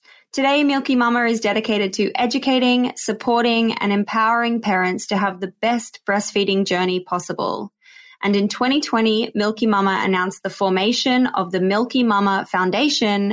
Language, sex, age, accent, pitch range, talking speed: English, female, 20-39, Australian, 195-245 Hz, 140 wpm